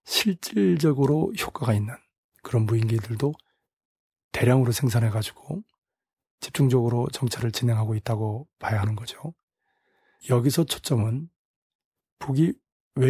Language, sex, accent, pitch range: Korean, male, native, 120-150 Hz